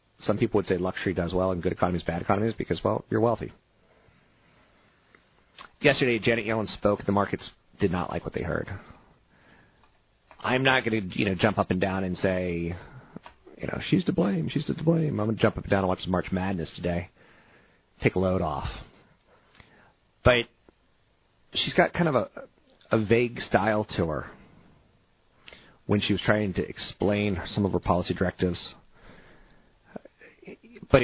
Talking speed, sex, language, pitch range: 170 wpm, male, English, 90-110 Hz